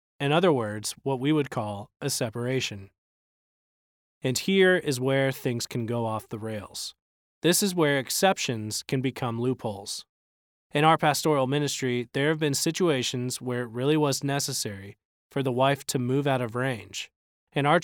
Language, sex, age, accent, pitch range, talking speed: English, male, 20-39, American, 115-145 Hz, 165 wpm